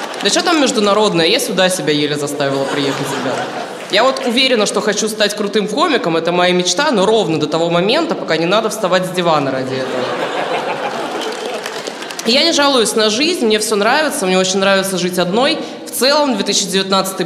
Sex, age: female, 20-39